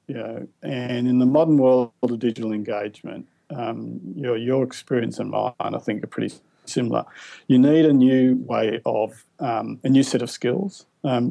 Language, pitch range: English, 115-130 Hz